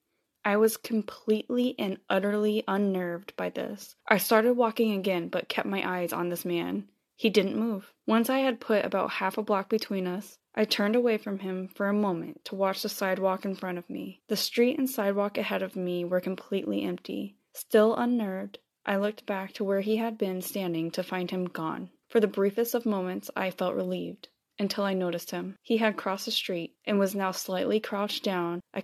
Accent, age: American, 20-39